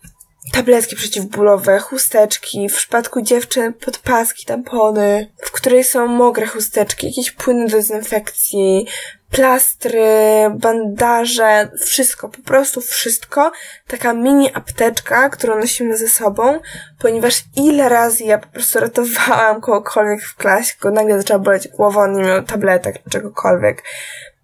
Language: Polish